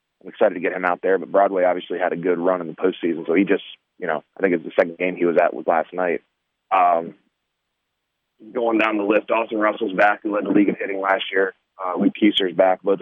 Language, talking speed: English, 250 wpm